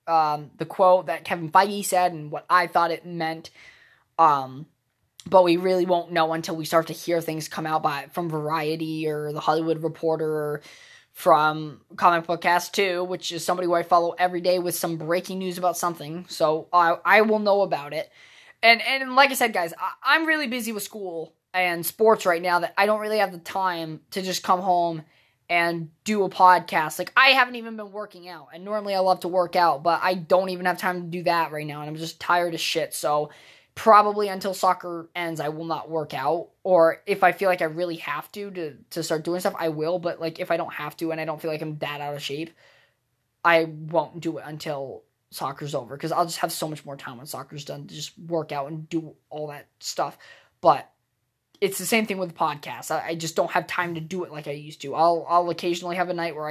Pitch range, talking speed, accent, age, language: 160-185 Hz, 235 wpm, American, 20-39, English